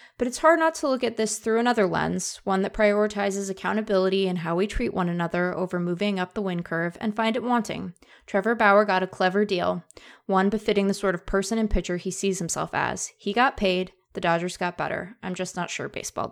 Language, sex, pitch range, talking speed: English, female, 180-225 Hz, 225 wpm